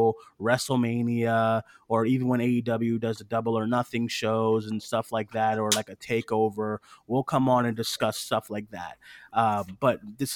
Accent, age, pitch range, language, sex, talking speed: American, 20-39, 115-140 Hz, English, male, 175 wpm